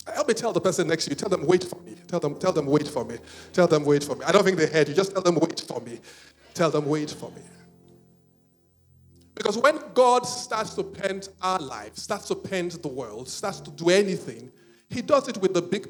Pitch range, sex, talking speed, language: 165-245 Hz, male, 245 wpm, English